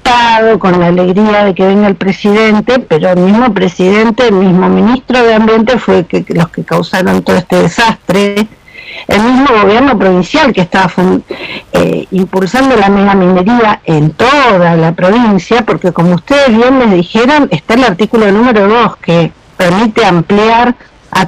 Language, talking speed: Spanish, 160 wpm